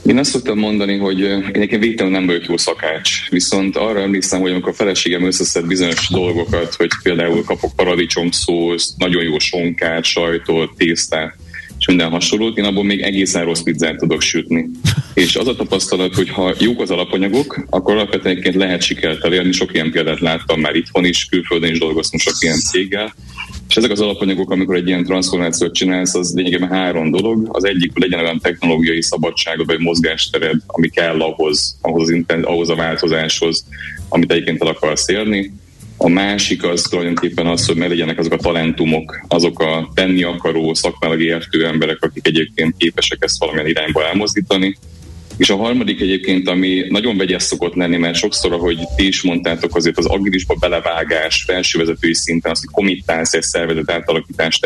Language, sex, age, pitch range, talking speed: Hungarian, male, 30-49, 80-95 Hz, 170 wpm